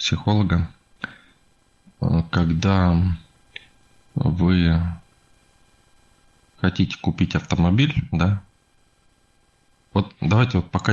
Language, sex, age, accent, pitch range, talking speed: Russian, male, 20-39, native, 80-100 Hz, 60 wpm